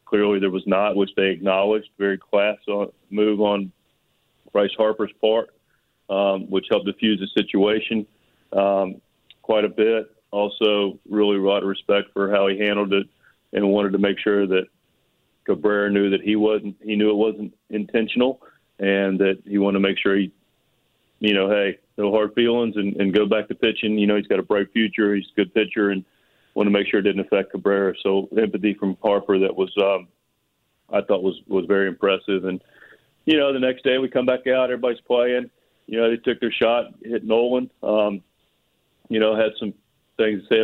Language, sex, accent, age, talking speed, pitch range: English, male, American, 40-59, 190 wpm, 100-110 Hz